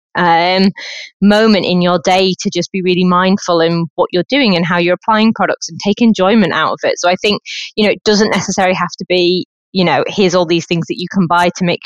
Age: 20-39